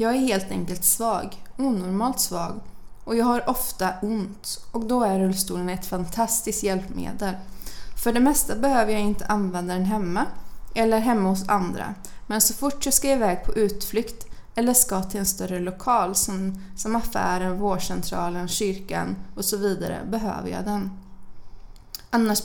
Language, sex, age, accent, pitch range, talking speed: English, female, 20-39, Swedish, 185-230 Hz, 155 wpm